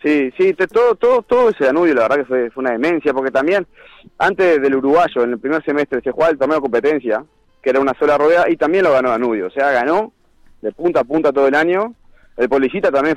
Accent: Argentinian